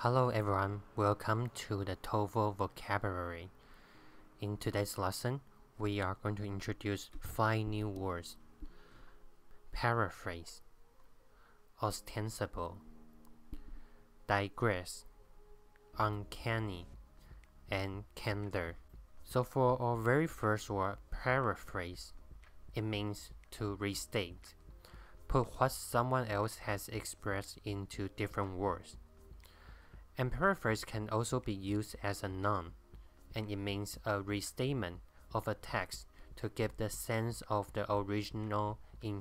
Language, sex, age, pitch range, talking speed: English, male, 20-39, 85-110 Hz, 105 wpm